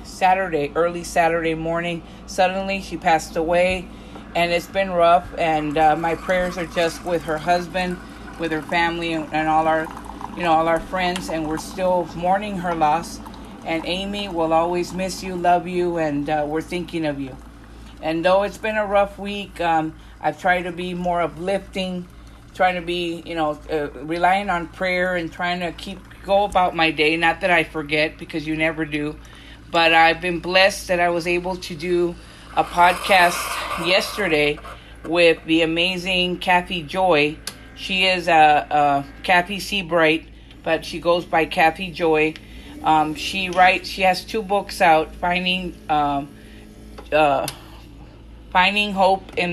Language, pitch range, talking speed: English, 160-185 Hz, 165 wpm